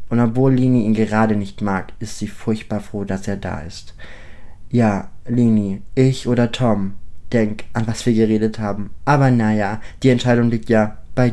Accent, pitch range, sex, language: German, 100-125 Hz, male, German